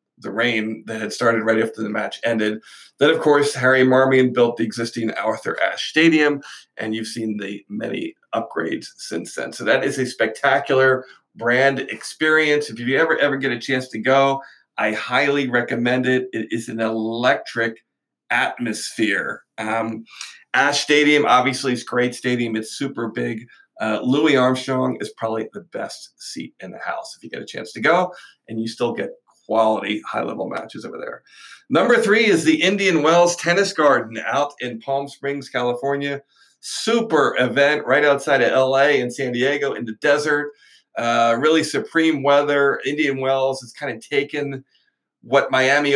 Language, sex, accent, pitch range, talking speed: English, male, American, 115-140 Hz, 170 wpm